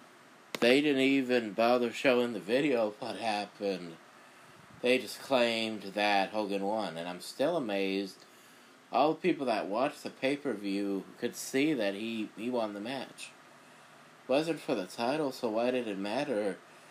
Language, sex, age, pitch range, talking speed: English, male, 30-49, 100-120 Hz, 160 wpm